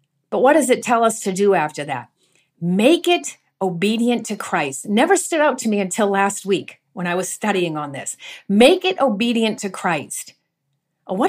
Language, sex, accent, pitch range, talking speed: English, female, American, 170-235 Hz, 185 wpm